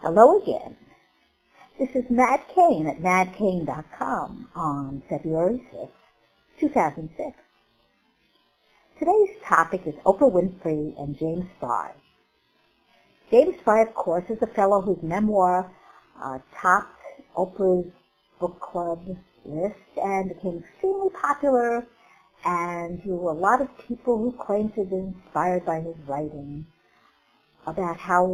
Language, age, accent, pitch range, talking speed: English, 60-79, American, 175-255 Hz, 115 wpm